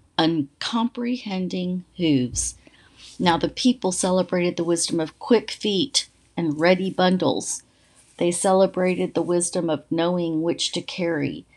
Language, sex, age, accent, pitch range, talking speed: English, female, 40-59, American, 160-190 Hz, 120 wpm